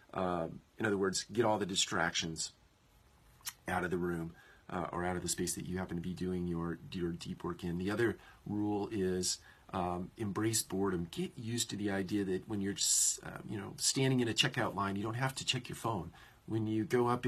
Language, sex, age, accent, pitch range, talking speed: English, male, 40-59, American, 95-125 Hz, 220 wpm